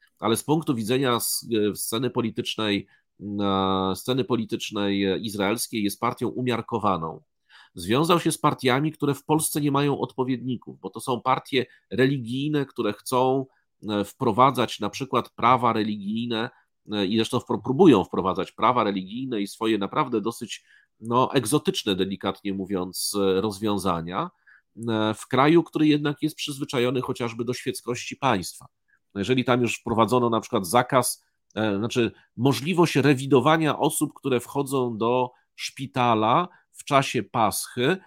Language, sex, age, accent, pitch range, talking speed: Polish, male, 40-59, native, 105-140 Hz, 120 wpm